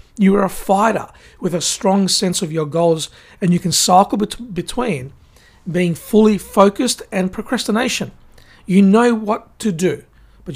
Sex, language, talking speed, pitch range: male, English, 160 wpm, 165-200 Hz